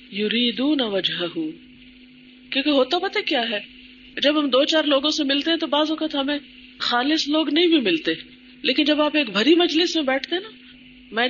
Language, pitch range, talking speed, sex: Urdu, 230-295 Hz, 185 wpm, female